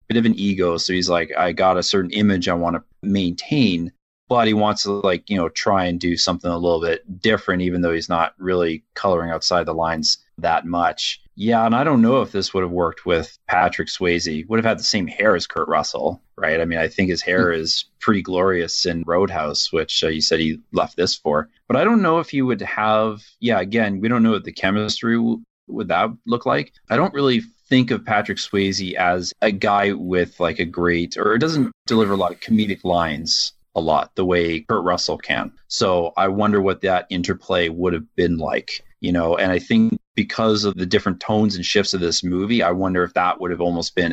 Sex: male